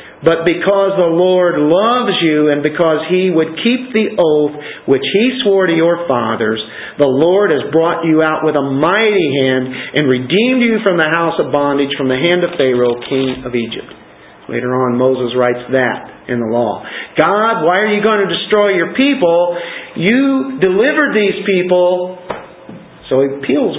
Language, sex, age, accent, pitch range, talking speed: English, male, 50-69, American, 130-180 Hz, 175 wpm